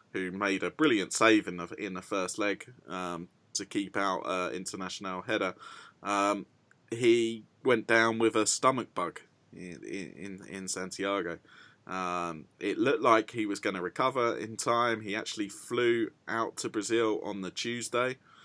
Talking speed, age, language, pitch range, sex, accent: 165 wpm, 20-39, English, 95-115 Hz, male, British